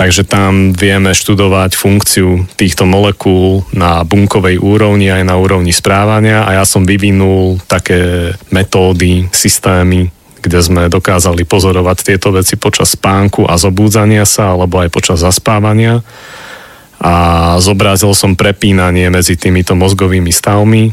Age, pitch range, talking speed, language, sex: 30-49, 90-105 Hz, 125 wpm, Slovak, male